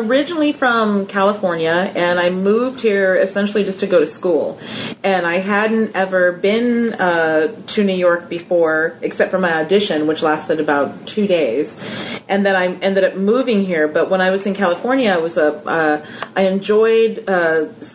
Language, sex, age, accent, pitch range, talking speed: English, female, 30-49, American, 170-220 Hz, 170 wpm